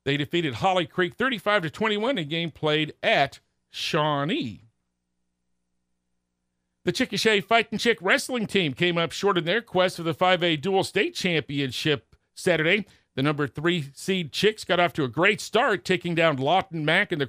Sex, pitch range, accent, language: male, 140-185 Hz, American, English